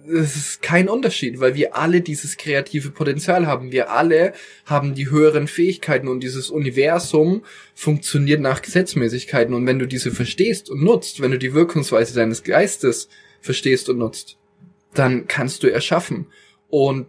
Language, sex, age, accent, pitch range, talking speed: German, male, 20-39, German, 130-160 Hz, 155 wpm